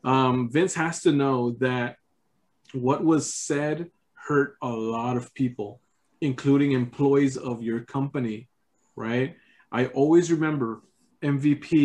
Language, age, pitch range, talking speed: English, 20-39, 125-160 Hz, 120 wpm